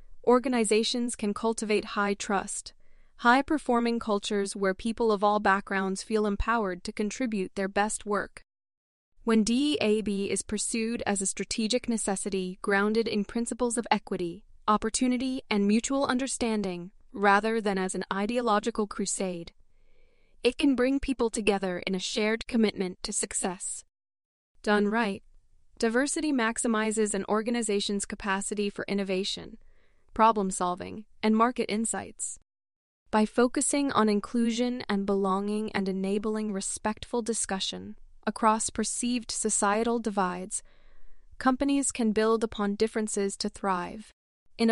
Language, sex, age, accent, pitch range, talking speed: English, female, 20-39, American, 195-235 Hz, 120 wpm